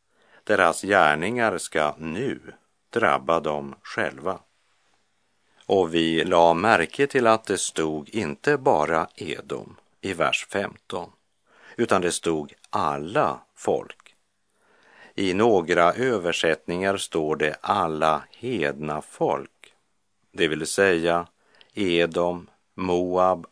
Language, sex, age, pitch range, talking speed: German, male, 50-69, 80-95 Hz, 100 wpm